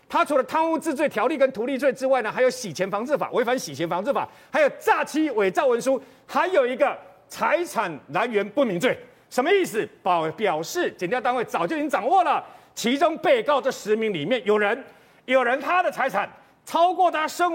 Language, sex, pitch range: Chinese, male, 225-310 Hz